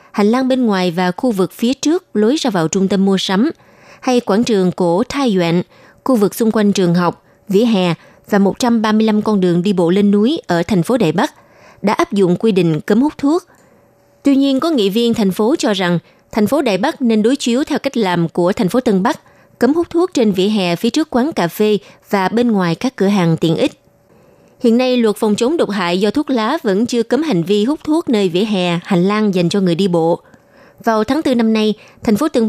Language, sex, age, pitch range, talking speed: Vietnamese, female, 20-39, 185-240 Hz, 235 wpm